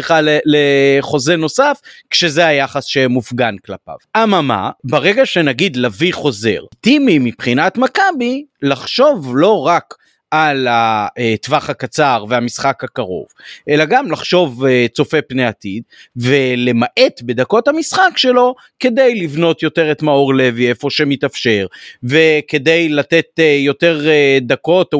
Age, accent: 30-49, native